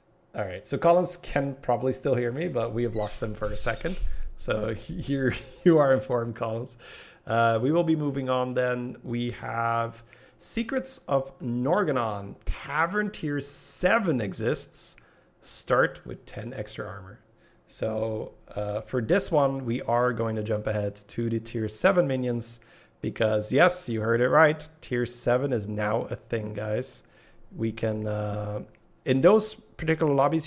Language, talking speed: English, 160 wpm